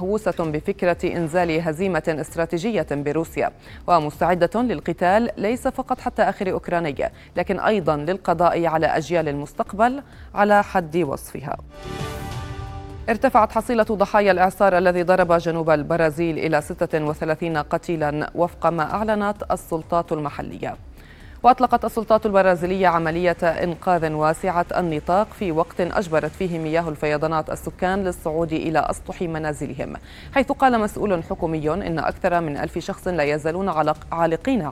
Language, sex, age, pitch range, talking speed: Arabic, female, 30-49, 160-195 Hz, 120 wpm